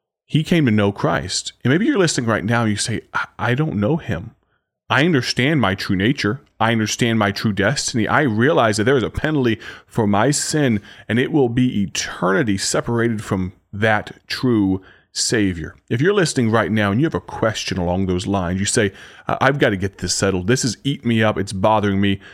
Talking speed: 205 wpm